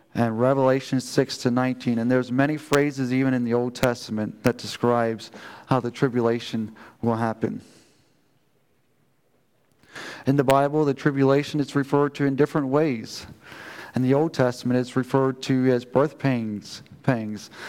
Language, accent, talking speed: English, American, 145 wpm